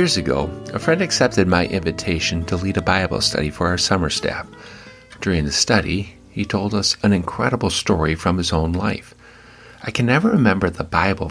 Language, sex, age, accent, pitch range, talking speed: English, male, 50-69, American, 85-115 Hz, 185 wpm